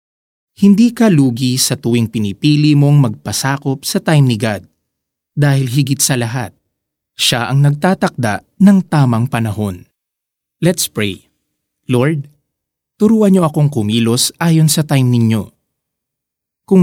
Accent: native